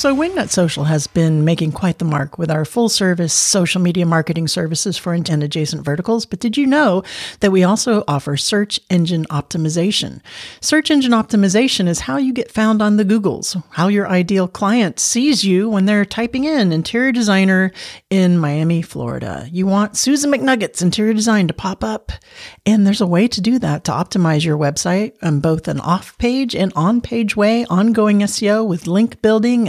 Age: 50-69